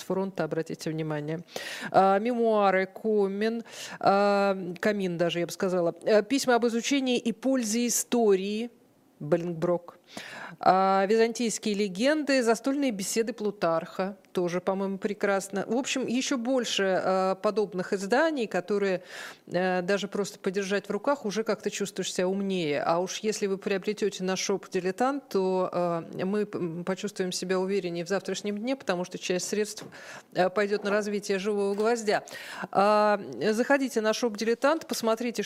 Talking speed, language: 120 wpm, Russian